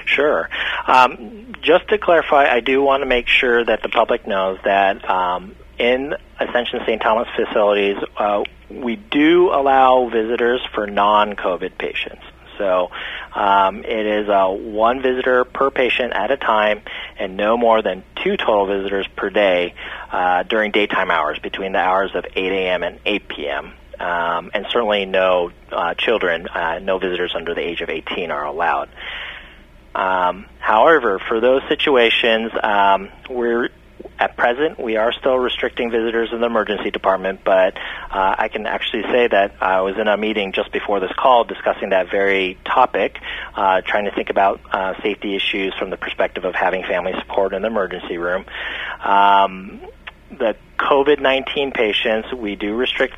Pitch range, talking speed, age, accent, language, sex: 95-125 Hz, 165 wpm, 30-49, American, English, male